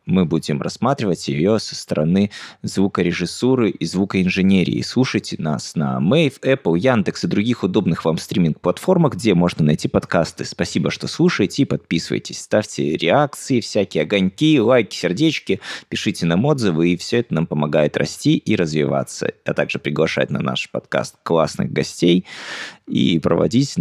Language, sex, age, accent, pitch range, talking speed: Russian, male, 20-39, native, 80-115 Hz, 140 wpm